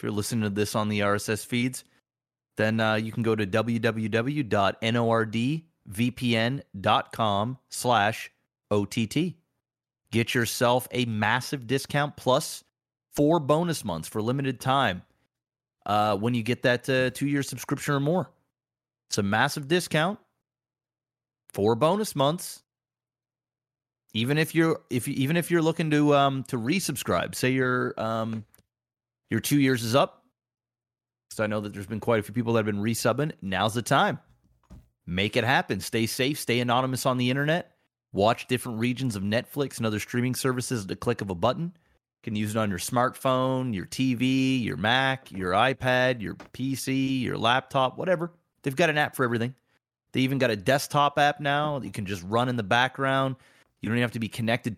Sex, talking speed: male, 170 wpm